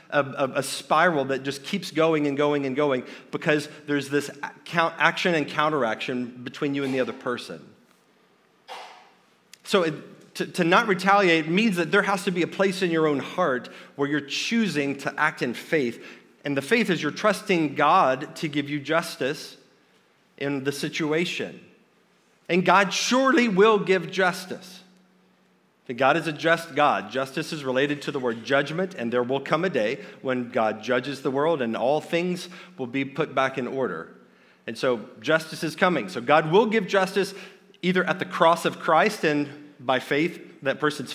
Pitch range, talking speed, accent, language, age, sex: 140-180 Hz, 180 wpm, American, English, 40-59, male